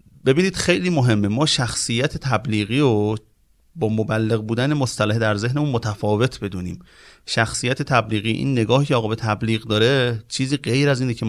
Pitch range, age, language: 110-145 Hz, 30-49, Persian